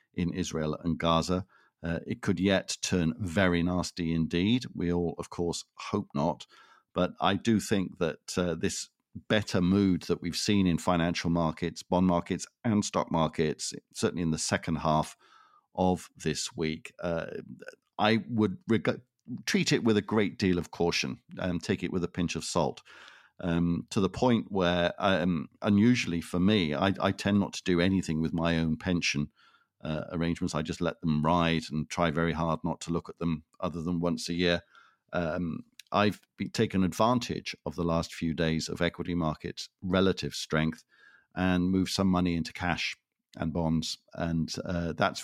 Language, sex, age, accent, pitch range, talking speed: English, male, 50-69, British, 80-95 Hz, 175 wpm